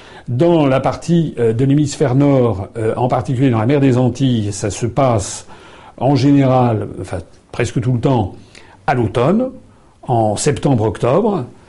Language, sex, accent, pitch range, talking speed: French, male, French, 110-145 Hz, 140 wpm